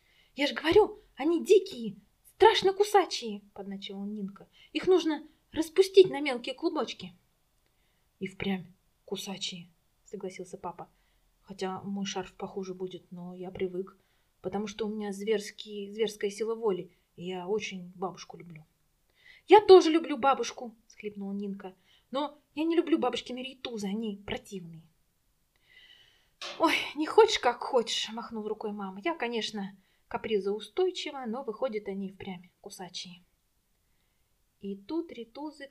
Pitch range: 190-285 Hz